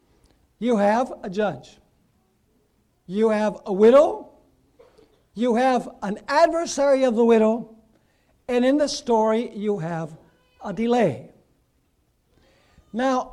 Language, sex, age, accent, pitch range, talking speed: English, male, 60-79, American, 205-270 Hz, 110 wpm